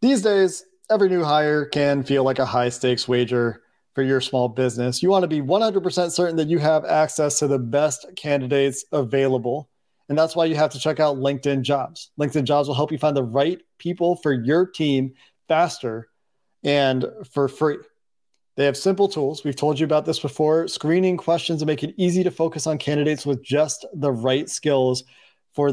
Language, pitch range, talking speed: English, 130-155 Hz, 190 wpm